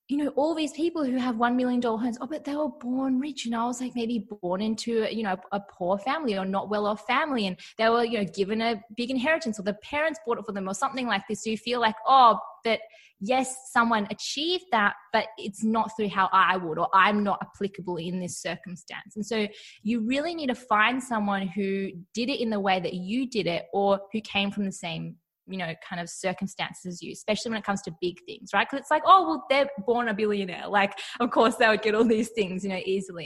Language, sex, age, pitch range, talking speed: English, female, 20-39, 205-265 Hz, 245 wpm